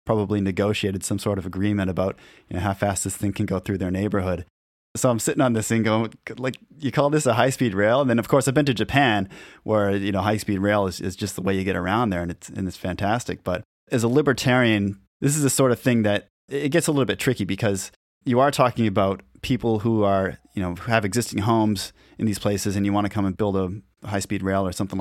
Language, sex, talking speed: English, male, 250 wpm